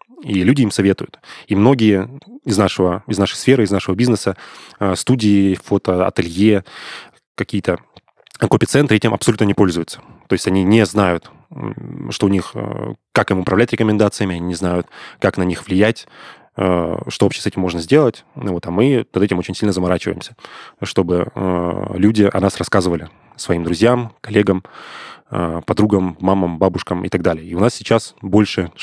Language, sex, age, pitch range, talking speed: Russian, male, 20-39, 90-105 Hz, 160 wpm